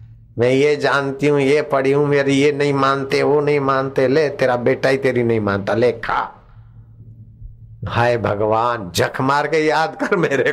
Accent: native